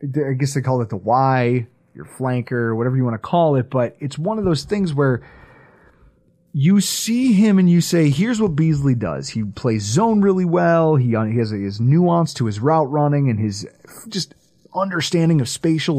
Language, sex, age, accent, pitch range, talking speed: English, male, 30-49, American, 130-175 Hz, 195 wpm